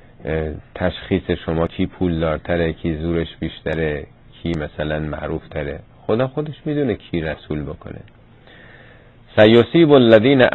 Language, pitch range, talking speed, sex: Persian, 85-120 Hz, 110 wpm, male